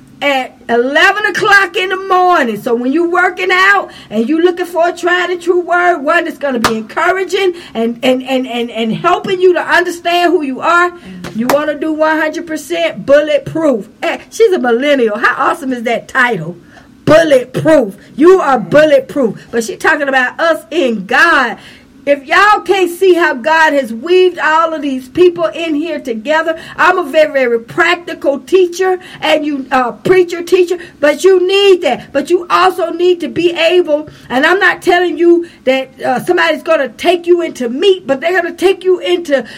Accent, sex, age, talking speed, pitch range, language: American, female, 50-69, 185 wpm, 265-355 Hz, English